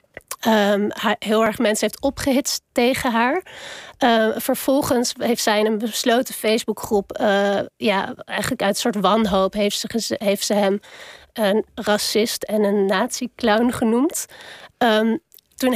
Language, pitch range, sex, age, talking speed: Dutch, 210-245 Hz, female, 30-49, 135 wpm